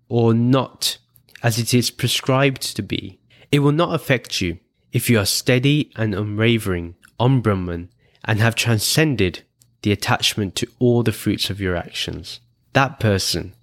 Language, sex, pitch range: English, male, 100-125 Hz